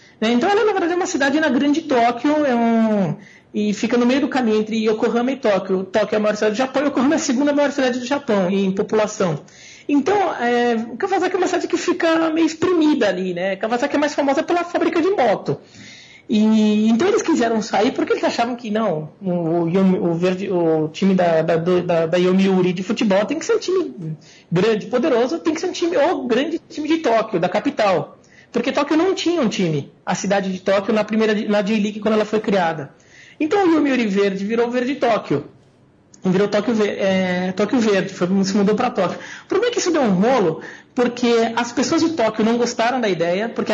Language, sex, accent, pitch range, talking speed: Portuguese, male, Brazilian, 195-275 Hz, 215 wpm